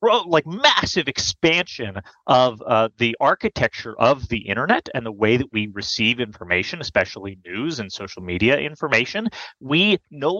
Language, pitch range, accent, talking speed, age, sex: English, 120-195 Hz, American, 145 wpm, 30-49, male